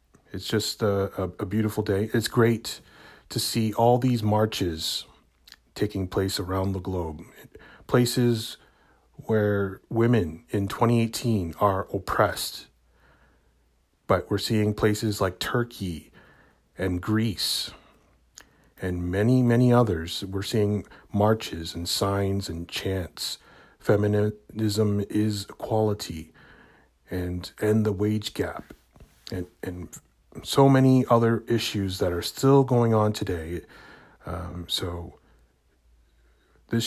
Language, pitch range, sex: English, 90-110 Hz, male